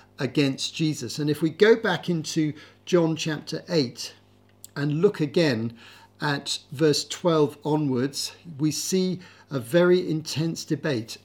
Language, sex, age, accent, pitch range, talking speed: English, male, 50-69, British, 125-160 Hz, 130 wpm